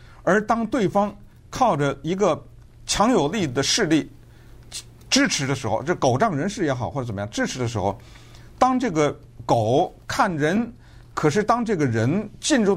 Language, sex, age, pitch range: Chinese, male, 50-69, 120-200 Hz